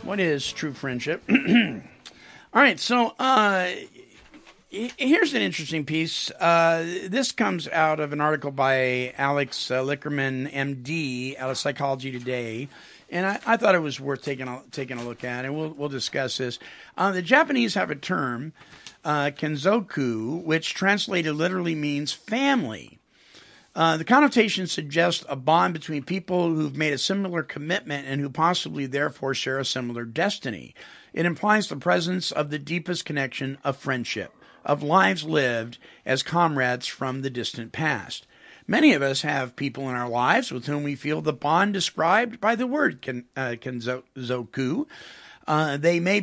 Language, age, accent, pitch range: English, 50-69, American, 135-185 Hz